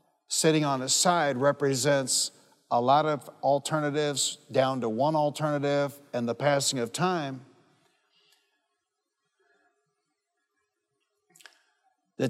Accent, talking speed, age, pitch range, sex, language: American, 95 wpm, 60-79, 135-165 Hz, male, English